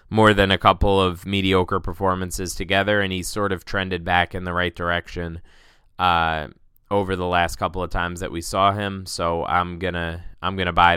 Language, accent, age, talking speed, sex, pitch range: English, American, 20-39, 190 wpm, male, 85-100 Hz